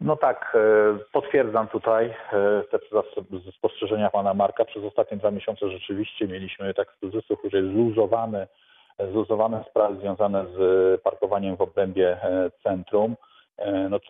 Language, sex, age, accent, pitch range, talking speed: Polish, male, 40-59, native, 100-115 Hz, 110 wpm